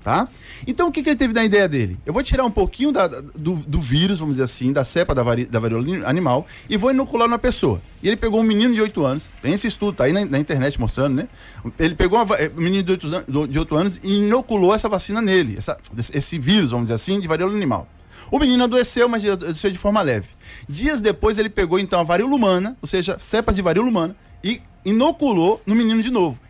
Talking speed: 240 wpm